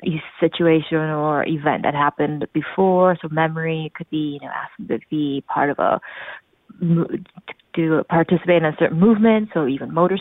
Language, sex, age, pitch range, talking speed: English, female, 20-39, 160-215 Hz, 165 wpm